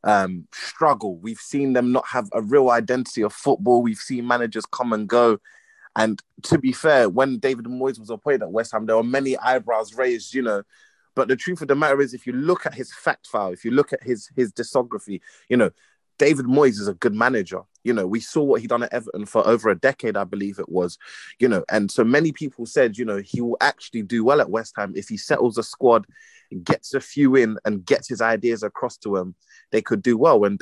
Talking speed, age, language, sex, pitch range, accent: 235 wpm, 20-39, English, male, 110-135 Hz, British